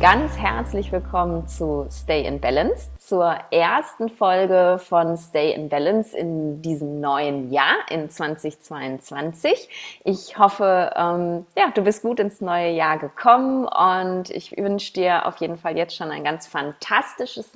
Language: German